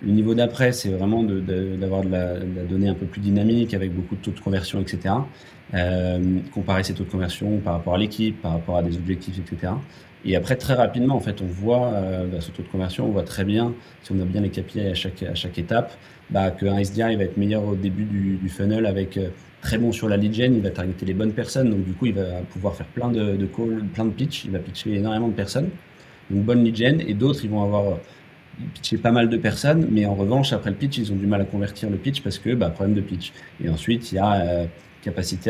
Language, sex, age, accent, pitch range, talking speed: French, male, 30-49, French, 95-115 Hz, 260 wpm